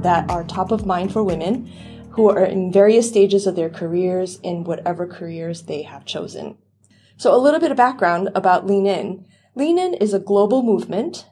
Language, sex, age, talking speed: English, female, 30-49, 190 wpm